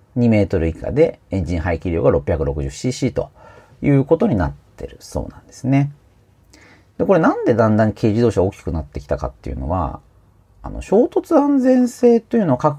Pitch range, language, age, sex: 95-140 Hz, Japanese, 40-59, male